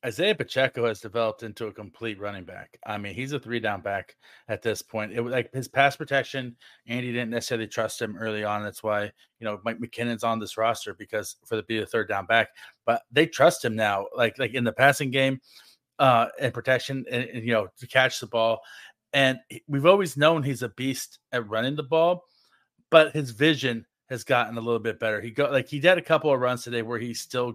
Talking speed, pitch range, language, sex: 225 wpm, 110-130 Hz, English, male